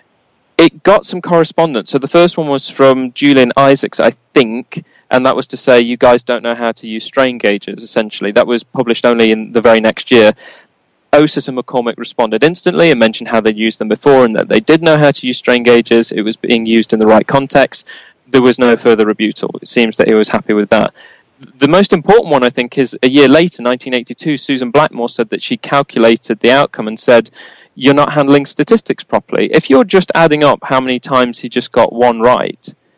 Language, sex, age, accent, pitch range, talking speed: English, male, 20-39, British, 120-150 Hz, 220 wpm